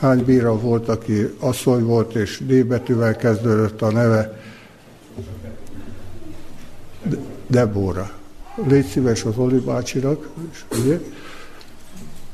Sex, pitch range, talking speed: male, 110-130 Hz, 85 wpm